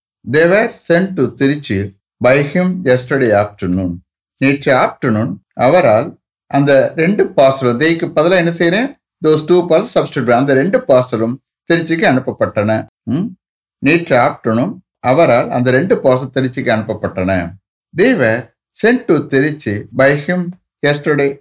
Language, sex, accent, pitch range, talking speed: English, male, Indian, 105-155 Hz, 135 wpm